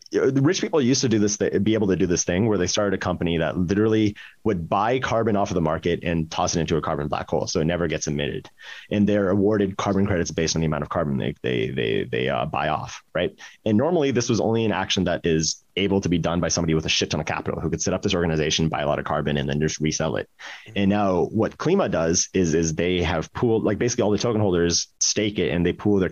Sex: male